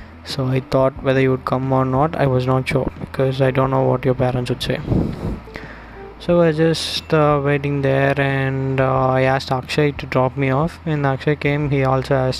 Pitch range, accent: 125-145 Hz, native